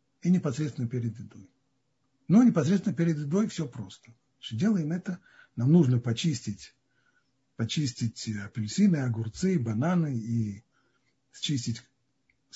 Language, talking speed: Russian, 100 wpm